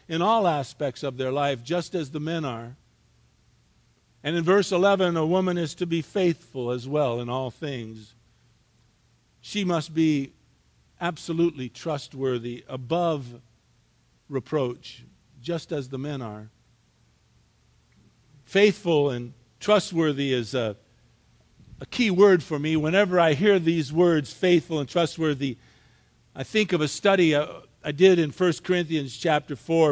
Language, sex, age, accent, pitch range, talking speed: English, male, 50-69, American, 130-185 Hz, 140 wpm